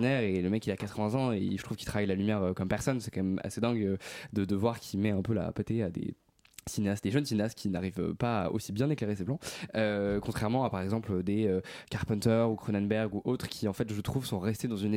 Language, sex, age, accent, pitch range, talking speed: French, male, 20-39, French, 100-125 Hz, 265 wpm